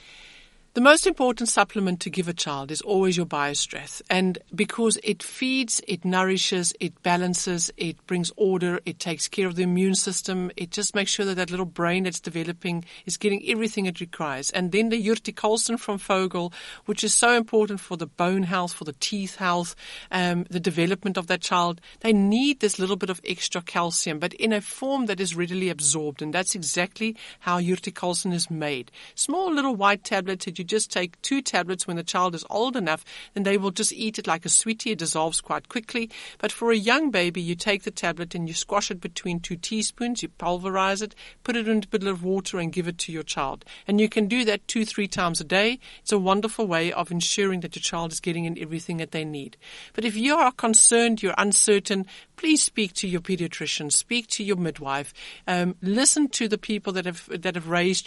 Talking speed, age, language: 210 wpm, 60-79, English